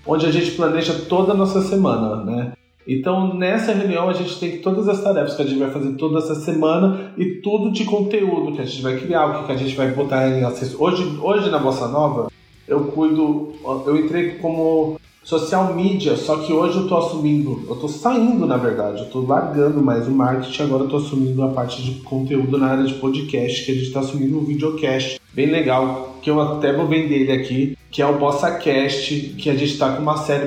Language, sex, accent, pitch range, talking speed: Portuguese, male, Brazilian, 135-180 Hz, 220 wpm